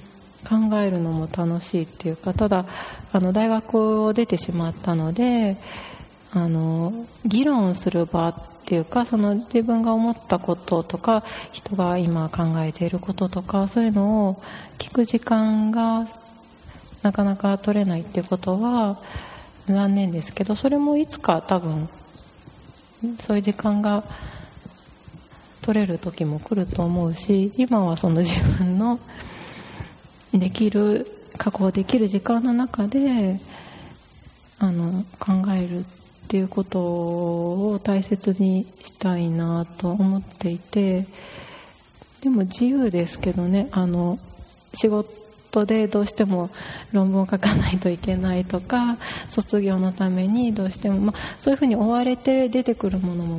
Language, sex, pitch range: Japanese, female, 180-220 Hz